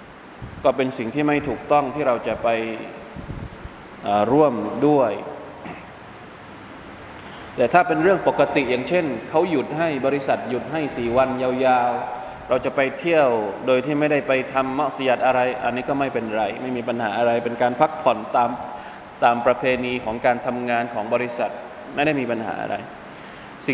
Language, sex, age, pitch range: Thai, male, 20-39, 125-150 Hz